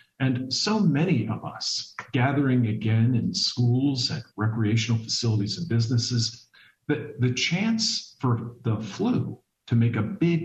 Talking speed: 140 wpm